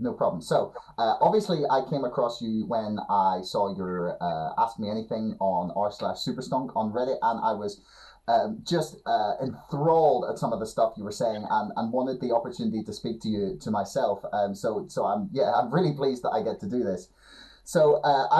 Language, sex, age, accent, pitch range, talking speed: English, male, 30-49, British, 100-140 Hz, 210 wpm